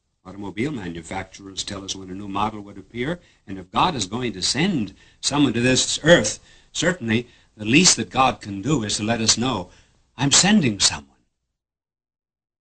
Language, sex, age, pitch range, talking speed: English, male, 60-79, 95-145 Hz, 170 wpm